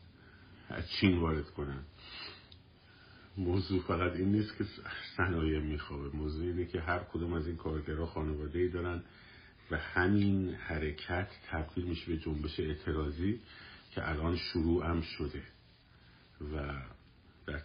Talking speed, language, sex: 125 wpm, Persian, male